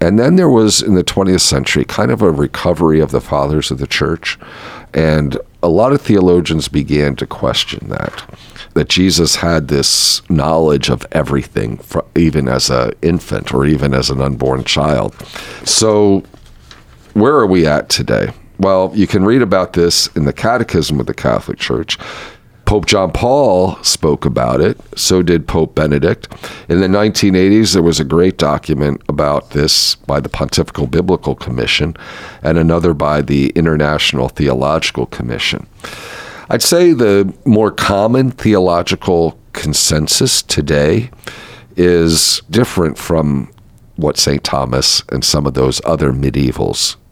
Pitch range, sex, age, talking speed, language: 70-95 Hz, male, 50-69, 145 wpm, English